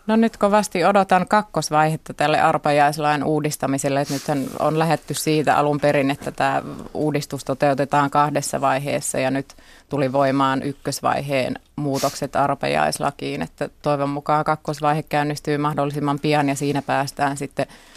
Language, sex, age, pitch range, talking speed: Finnish, female, 30-49, 140-150 Hz, 130 wpm